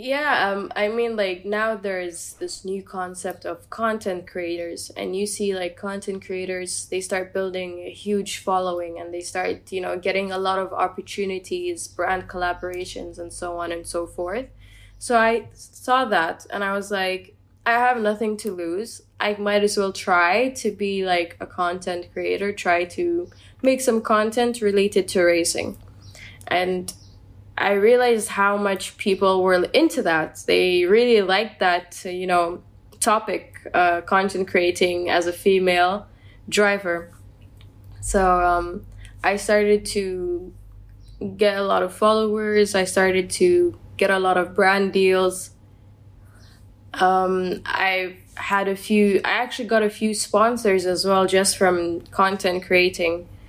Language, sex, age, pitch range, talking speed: German, female, 10-29, 175-205 Hz, 150 wpm